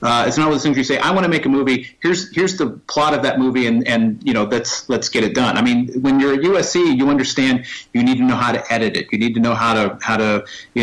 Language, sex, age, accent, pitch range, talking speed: English, male, 40-59, American, 120-170 Hz, 310 wpm